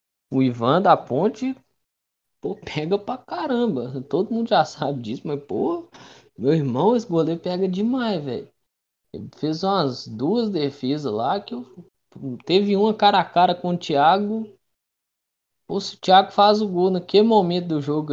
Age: 20-39